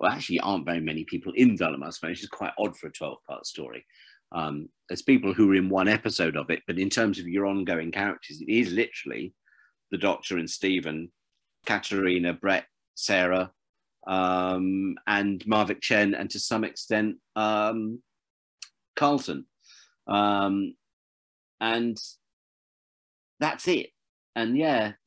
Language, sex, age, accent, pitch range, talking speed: English, male, 40-59, British, 95-115 Hz, 145 wpm